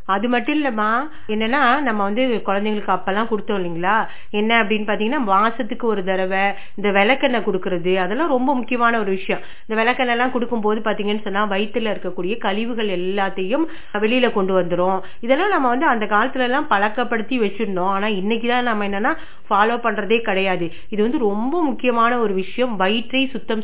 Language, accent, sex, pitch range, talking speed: Tamil, native, female, 195-250 Hz, 135 wpm